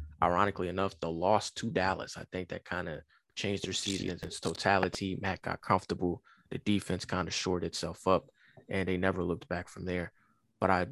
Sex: male